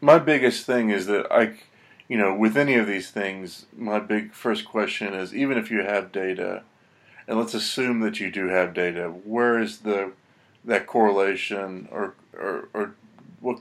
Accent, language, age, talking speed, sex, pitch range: American, English, 30-49, 175 wpm, male, 95-110 Hz